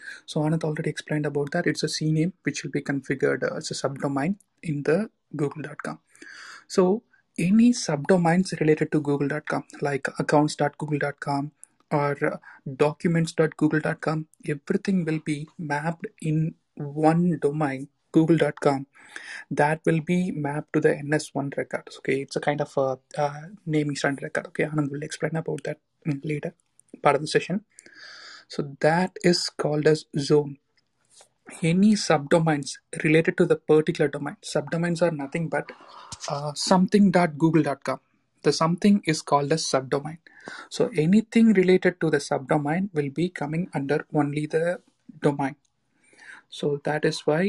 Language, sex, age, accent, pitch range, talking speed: Tamil, male, 30-49, native, 145-170 Hz, 140 wpm